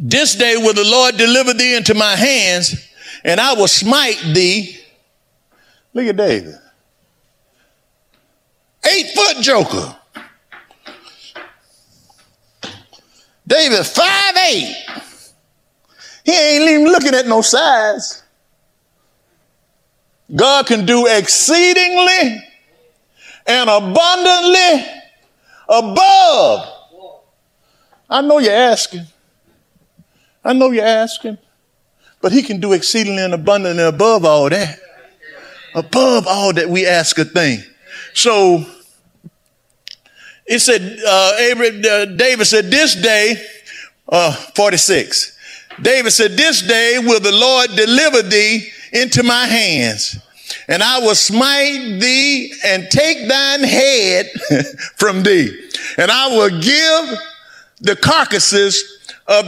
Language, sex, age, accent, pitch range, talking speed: English, male, 50-69, American, 205-280 Hz, 105 wpm